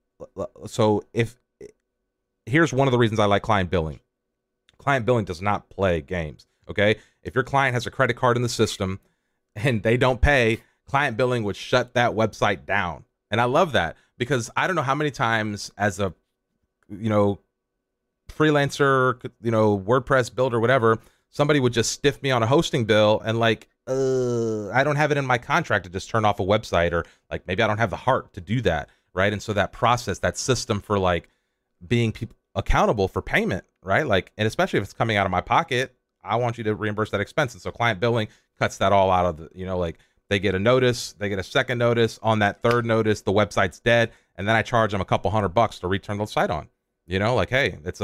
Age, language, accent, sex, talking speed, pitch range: 30-49, English, American, male, 220 wpm, 100-125 Hz